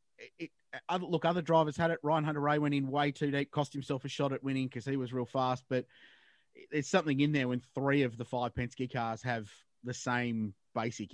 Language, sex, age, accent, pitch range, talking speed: English, male, 30-49, Australian, 120-140 Hz, 230 wpm